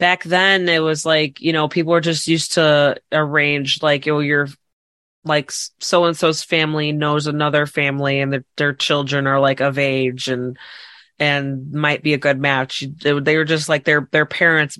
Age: 20-39